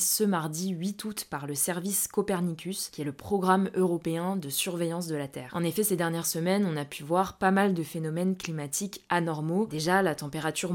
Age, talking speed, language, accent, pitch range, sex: 20-39, 200 wpm, French, French, 155-190 Hz, female